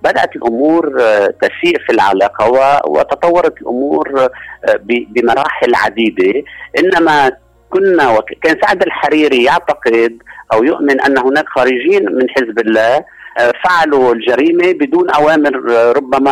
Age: 50-69